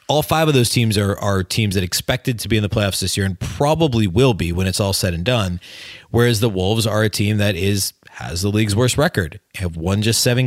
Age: 30-49